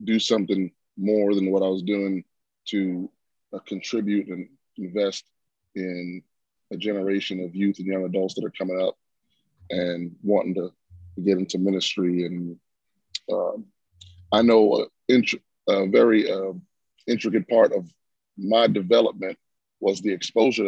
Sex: male